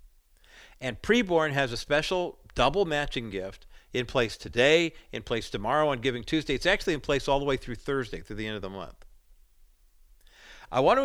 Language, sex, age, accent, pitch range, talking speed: English, male, 50-69, American, 120-160 Hz, 190 wpm